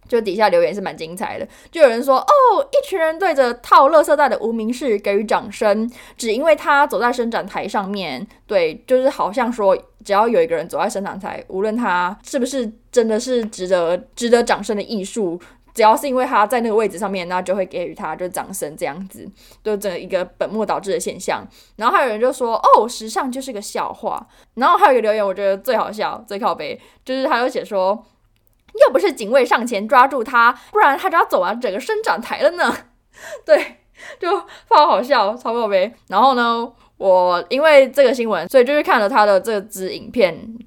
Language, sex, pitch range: Chinese, female, 205-300 Hz